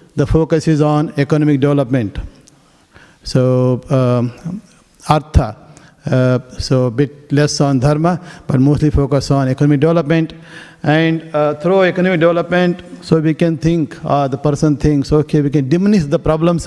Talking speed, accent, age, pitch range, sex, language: 150 wpm, Indian, 50-69, 135-160 Hz, male, English